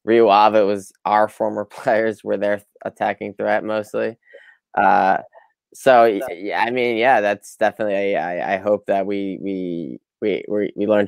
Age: 10-29